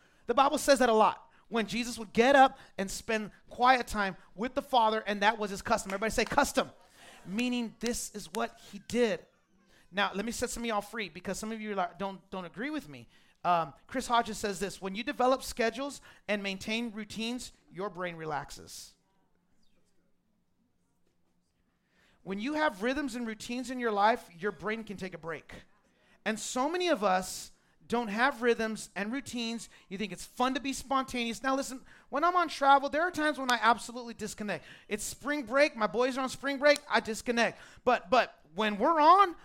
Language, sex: English, male